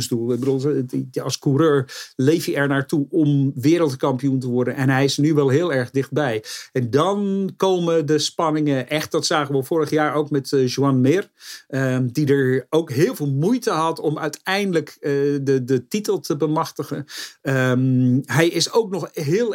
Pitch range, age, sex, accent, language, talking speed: 135-180 Hz, 50-69, male, Dutch, English, 165 wpm